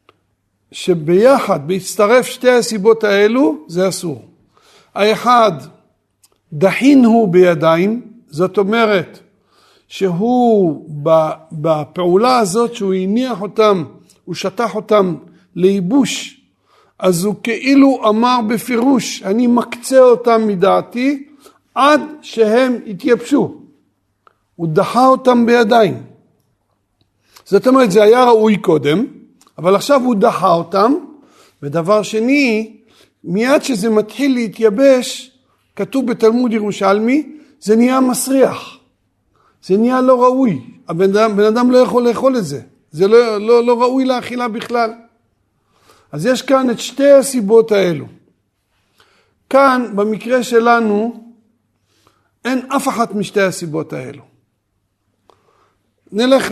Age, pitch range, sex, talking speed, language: 50-69, 190-250 Hz, male, 100 wpm, Hebrew